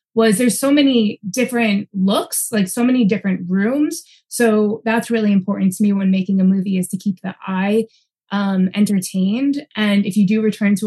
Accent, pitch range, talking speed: American, 185-220 Hz, 190 wpm